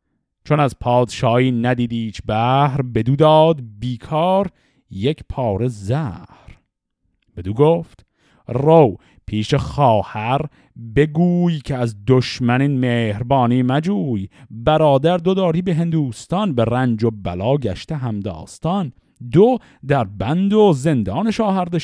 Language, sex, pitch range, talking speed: Persian, male, 105-150 Hz, 110 wpm